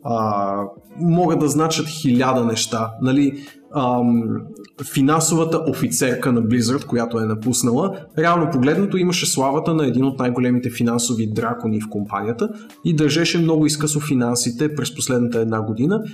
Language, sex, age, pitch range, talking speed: Bulgarian, male, 20-39, 120-155 Hz, 135 wpm